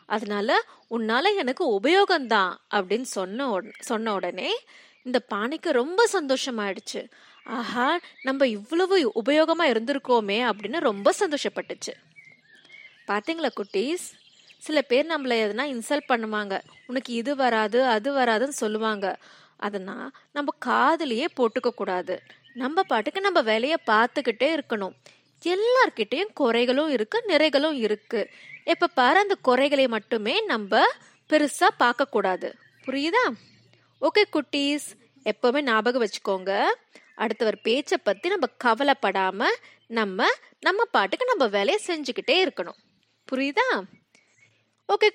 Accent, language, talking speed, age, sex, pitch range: native, Tamil, 100 wpm, 20-39, female, 220-330 Hz